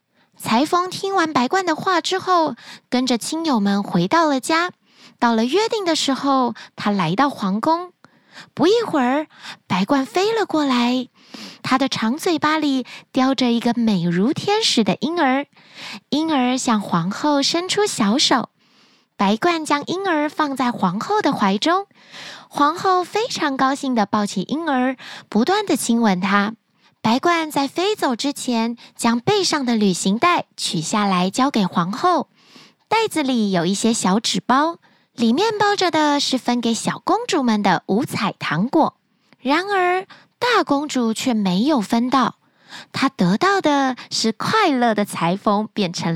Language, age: Chinese, 20-39